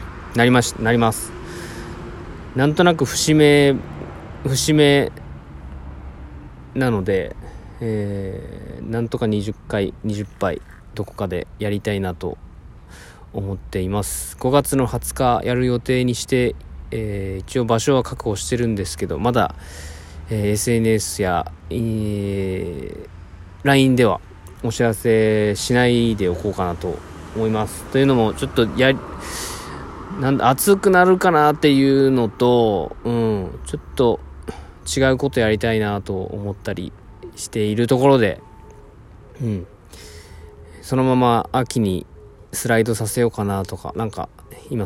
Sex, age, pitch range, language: male, 20-39, 95-120 Hz, Japanese